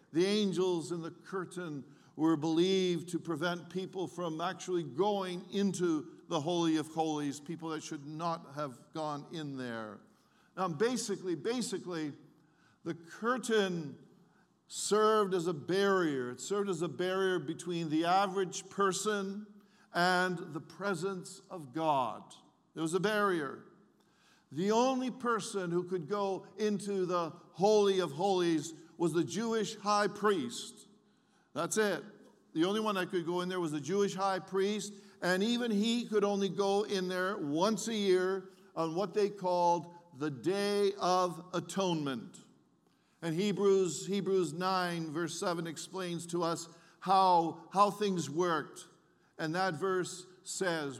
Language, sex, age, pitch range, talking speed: English, male, 50-69, 165-200 Hz, 140 wpm